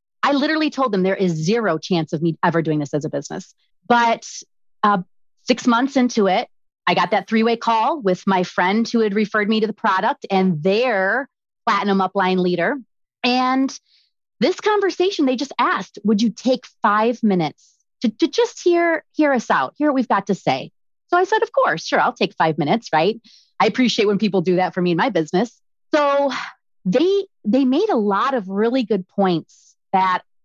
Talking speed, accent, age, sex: 195 wpm, American, 30-49, female